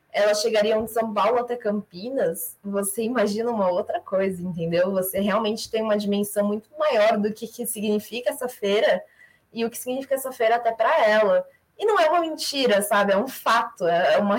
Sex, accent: female, Brazilian